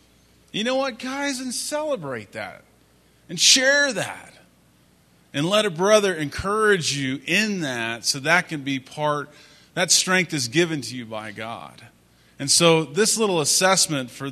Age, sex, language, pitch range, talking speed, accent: 30-49, male, English, 115-160 Hz, 155 wpm, American